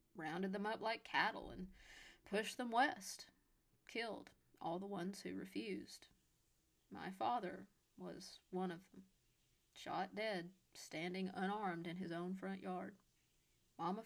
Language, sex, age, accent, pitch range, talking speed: English, female, 30-49, American, 185-225 Hz, 130 wpm